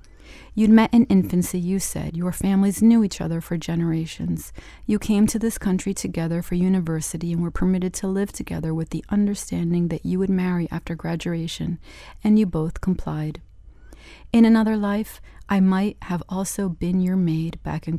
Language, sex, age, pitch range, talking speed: English, female, 40-59, 165-195 Hz, 175 wpm